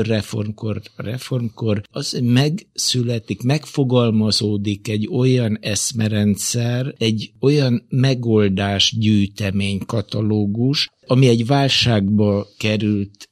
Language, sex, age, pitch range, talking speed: Hungarian, male, 60-79, 100-120 Hz, 70 wpm